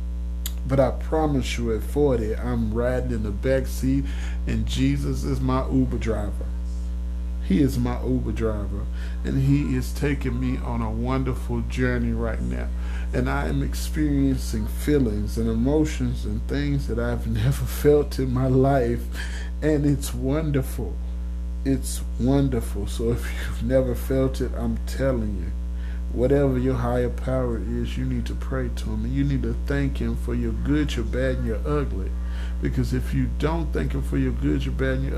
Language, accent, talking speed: English, American, 175 wpm